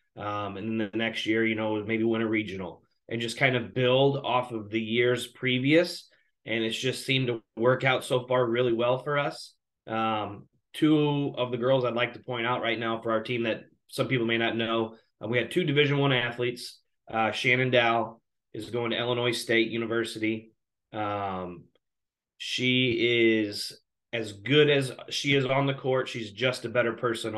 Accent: American